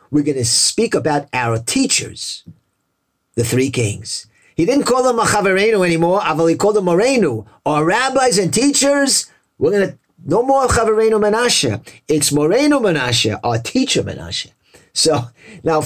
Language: English